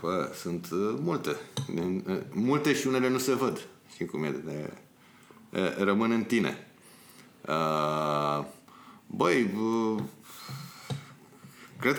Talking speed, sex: 80 wpm, male